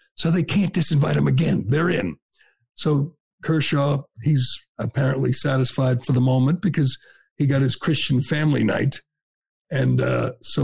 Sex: male